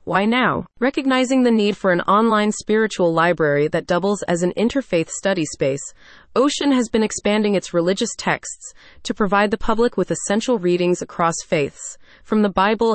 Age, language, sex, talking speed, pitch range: 30-49, English, female, 165 wpm, 175-225 Hz